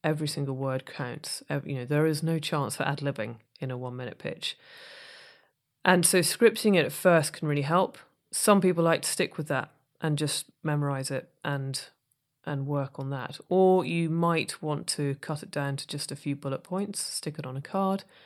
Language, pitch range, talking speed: English, 140-180 Hz, 195 wpm